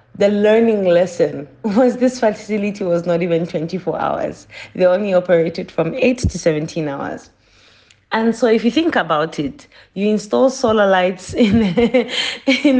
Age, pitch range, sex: 30-49, 165-220 Hz, female